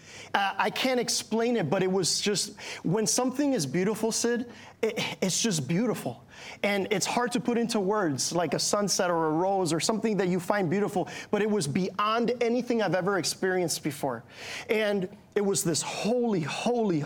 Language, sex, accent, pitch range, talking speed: English, male, American, 170-220 Hz, 180 wpm